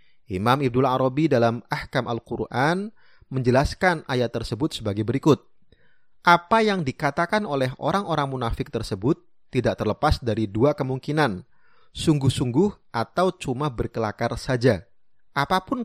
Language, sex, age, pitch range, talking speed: Indonesian, male, 30-49, 115-160 Hz, 110 wpm